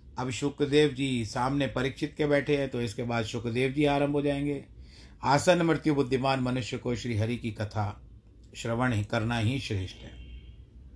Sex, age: male, 50-69